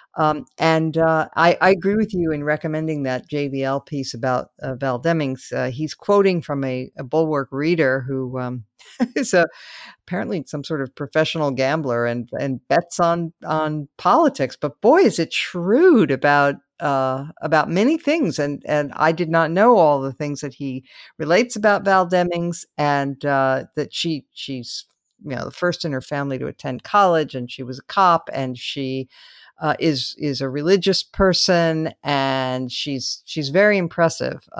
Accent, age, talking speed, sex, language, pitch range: American, 50-69, 170 wpm, female, English, 140-185 Hz